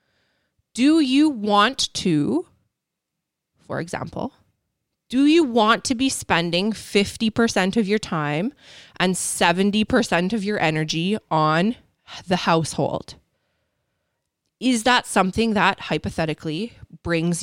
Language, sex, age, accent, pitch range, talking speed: English, female, 20-39, American, 170-210 Hz, 105 wpm